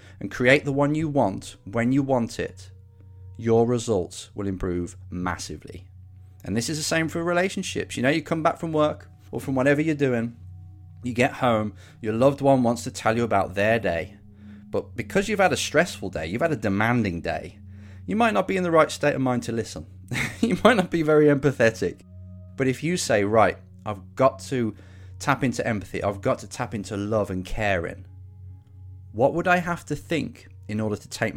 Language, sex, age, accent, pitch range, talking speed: English, male, 30-49, British, 95-130 Hz, 205 wpm